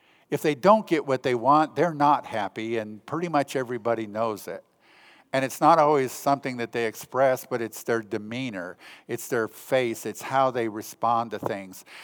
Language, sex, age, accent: English, male, 50-69, American